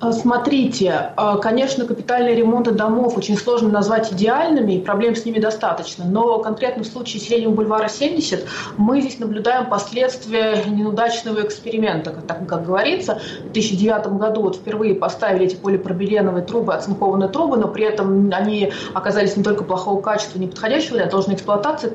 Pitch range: 200-235 Hz